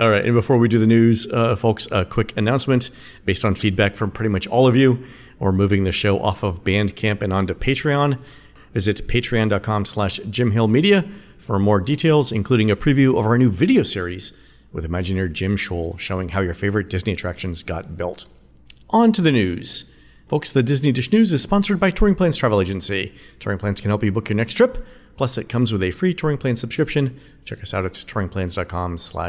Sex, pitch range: male, 95-125 Hz